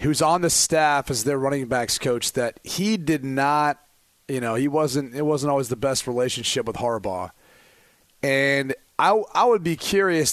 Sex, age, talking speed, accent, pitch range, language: male, 30-49, 180 wpm, American, 135-165 Hz, English